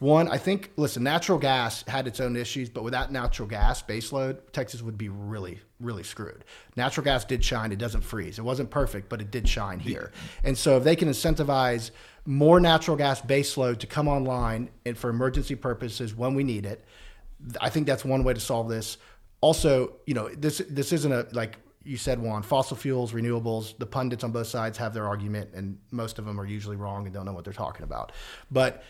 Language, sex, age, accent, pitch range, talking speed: English, male, 40-59, American, 115-140 Hz, 210 wpm